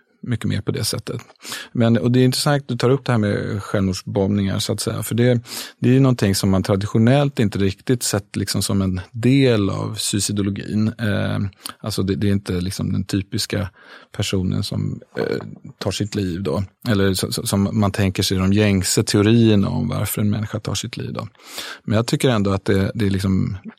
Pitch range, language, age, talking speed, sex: 100-115 Hz, English, 30-49, 195 wpm, male